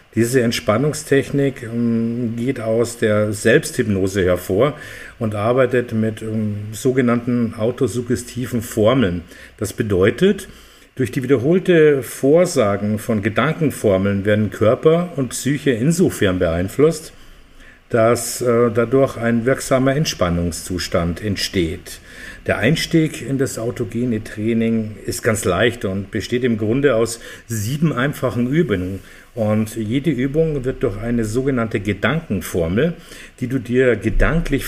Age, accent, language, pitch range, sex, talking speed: 50-69, German, German, 100-135 Hz, male, 105 wpm